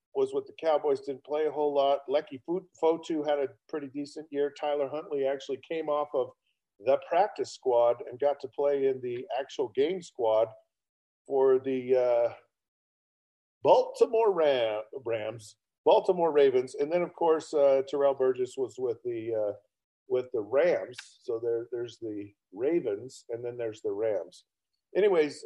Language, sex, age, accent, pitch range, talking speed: English, male, 50-69, American, 130-210 Hz, 160 wpm